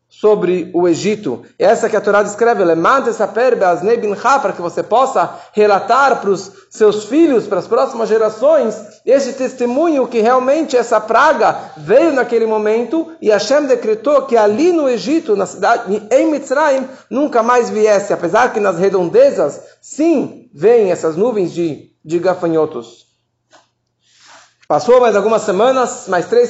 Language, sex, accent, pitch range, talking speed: Portuguese, male, Brazilian, 200-265 Hz, 140 wpm